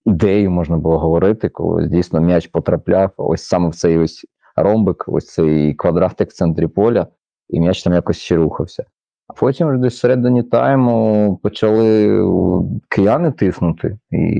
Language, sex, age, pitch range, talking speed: Ukrainian, male, 30-49, 85-105 Hz, 145 wpm